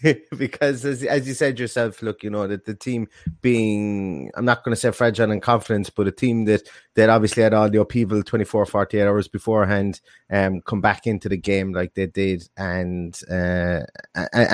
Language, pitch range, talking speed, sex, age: English, 110-135 Hz, 190 wpm, male, 30-49